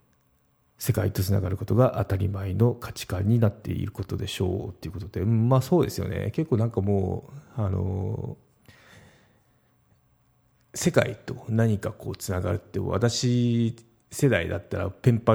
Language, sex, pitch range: Japanese, male, 95-120 Hz